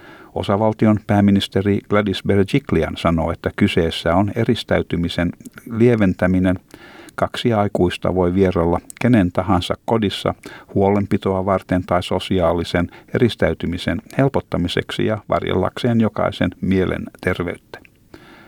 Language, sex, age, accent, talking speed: Finnish, male, 60-79, native, 90 wpm